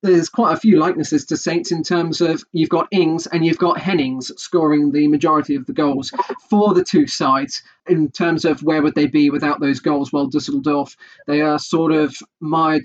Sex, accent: male, British